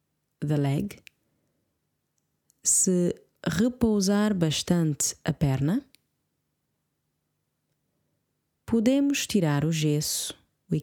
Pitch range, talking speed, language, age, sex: 150-200 Hz, 65 wpm, English, 20-39, female